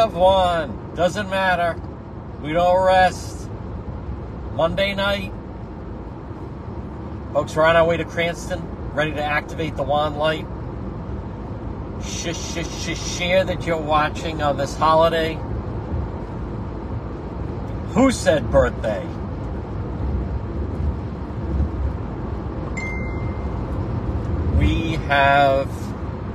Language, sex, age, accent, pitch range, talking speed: English, male, 50-69, American, 100-150 Hz, 85 wpm